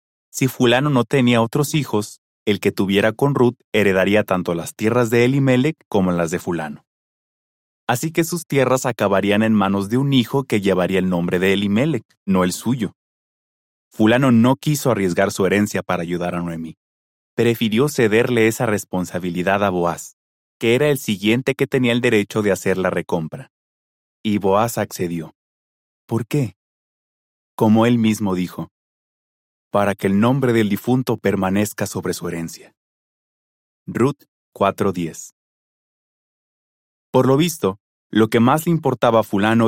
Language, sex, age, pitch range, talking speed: Spanish, male, 30-49, 95-120 Hz, 150 wpm